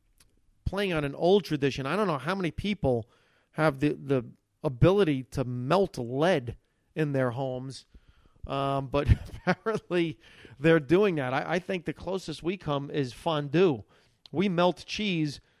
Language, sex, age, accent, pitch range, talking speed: English, male, 40-59, American, 140-215 Hz, 150 wpm